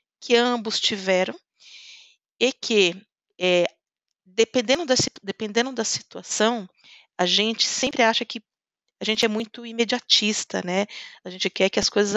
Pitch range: 185-230 Hz